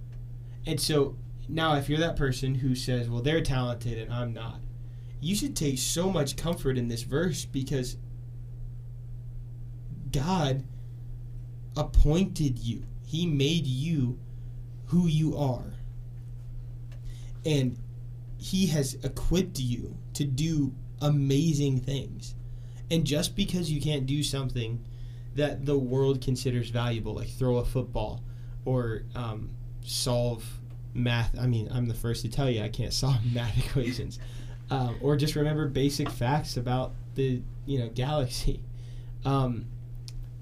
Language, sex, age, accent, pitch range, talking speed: English, male, 20-39, American, 120-135 Hz, 130 wpm